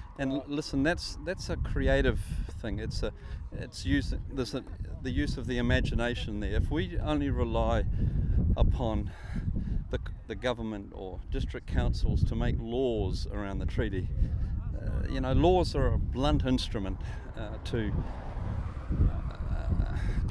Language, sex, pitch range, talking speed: English, male, 90-120 Hz, 145 wpm